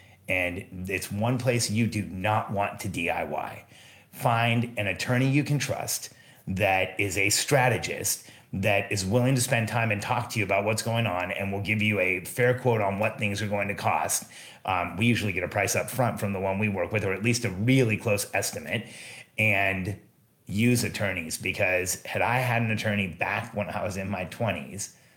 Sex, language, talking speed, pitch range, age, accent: male, English, 205 wpm, 100-120 Hz, 30-49, American